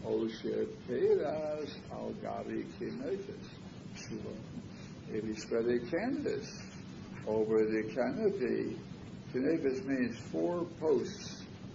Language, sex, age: English, male, 60-79